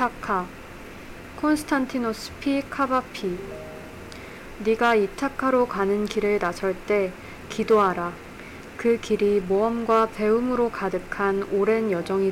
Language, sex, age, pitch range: Korean, female, 20-39, 190-230 Hz